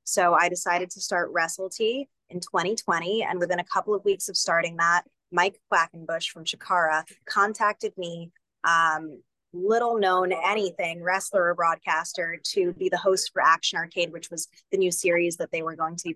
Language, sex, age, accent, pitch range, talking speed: English, female, 20-39, American, 170-195 Hz, 180 wpm